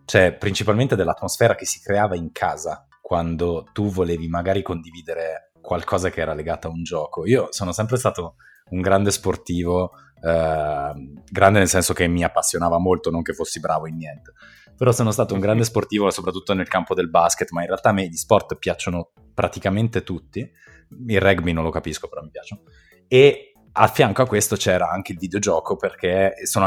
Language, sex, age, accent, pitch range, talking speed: Italian, male, 20-39, native, 85-105 Hz, 180 wpm